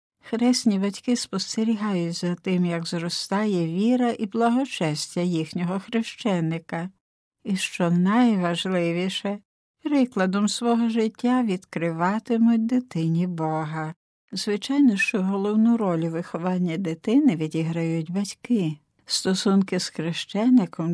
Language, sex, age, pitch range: Ukrainian, female, 60-79, 175-225 Hz